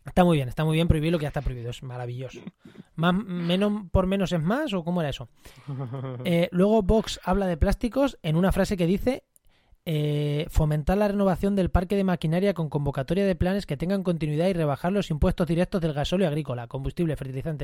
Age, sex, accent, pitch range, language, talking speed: 20-39, male, Spanish, 135-180 Hz, Spanish, 205 wpm